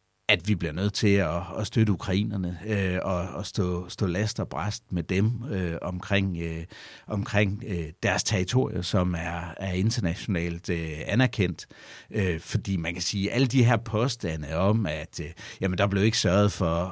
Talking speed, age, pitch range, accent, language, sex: 155 wpm, 60-79, 85-110 Hz, native, Danish, male